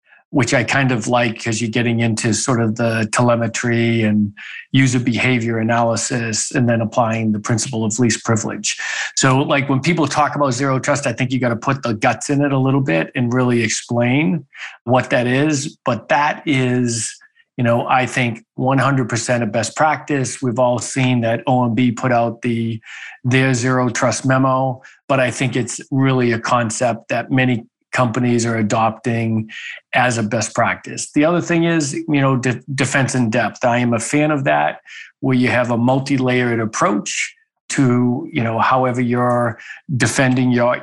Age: 40-59